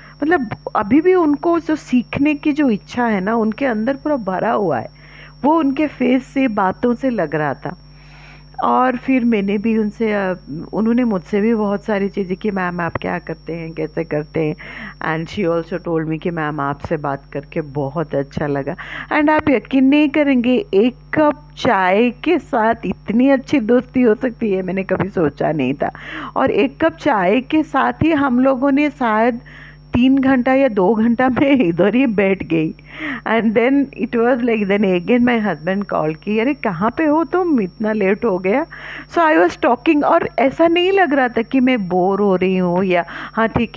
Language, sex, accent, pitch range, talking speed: Hindi, female, native, 170-265 Hz, 195 wpm